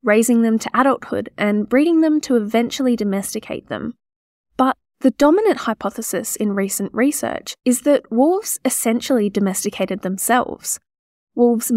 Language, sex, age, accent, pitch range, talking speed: English, female, 10-29, Australian, 205-260 Hz, 125 wpm